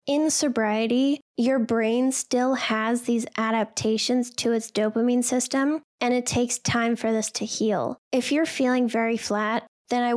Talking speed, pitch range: 160 wpm, 225-250 Hz